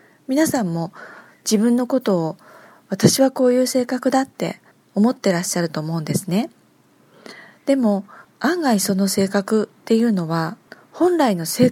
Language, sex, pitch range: Japanese, female, 175-265 Hz